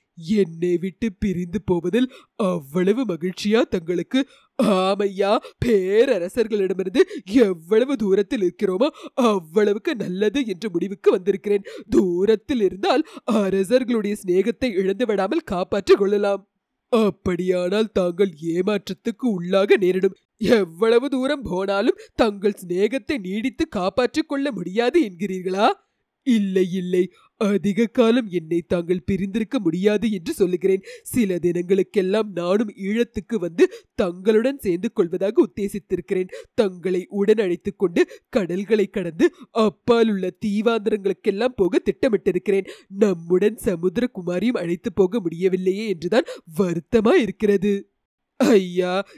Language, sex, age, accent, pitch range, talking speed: English, female, 30-49, Indian, 185-235 Hz, 100 wpm